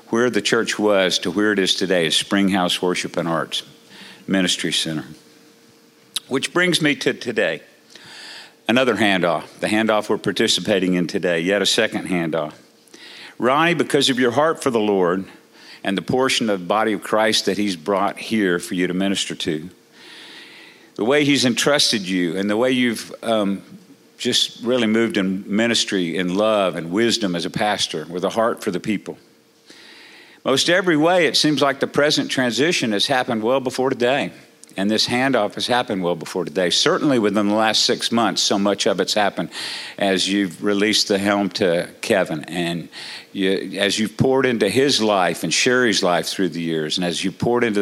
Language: English